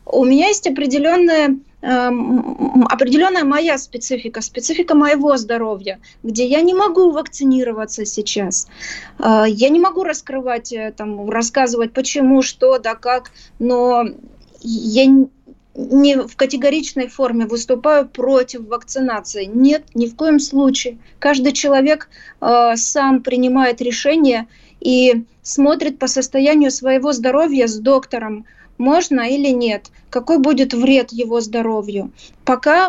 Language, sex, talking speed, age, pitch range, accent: Russian, female, 115 wpm, 20-39, 240-285 Hz, native